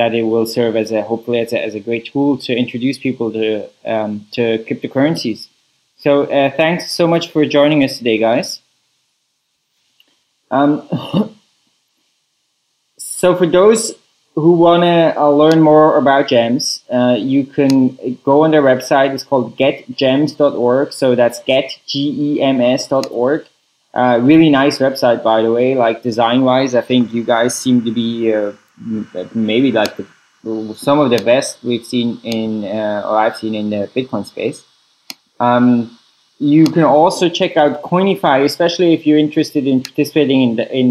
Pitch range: 120-145 Hz